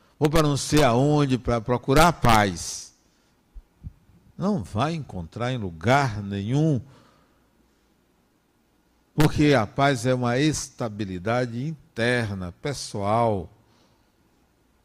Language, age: Portuguese, 60-79